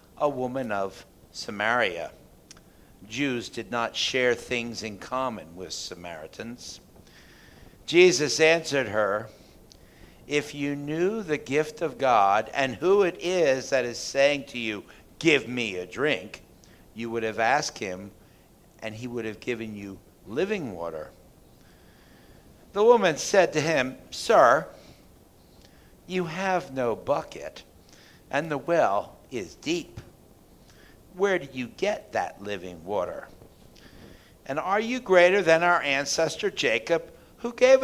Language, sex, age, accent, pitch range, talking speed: English, male, 60-79, American, 115-170 Hz, 130 wpm